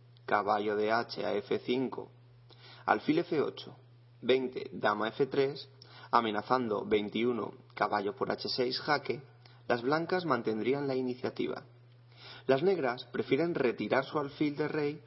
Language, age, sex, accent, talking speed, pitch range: Spanish, 30-49, male, Spanish, 115 wpm, 120-130 Hz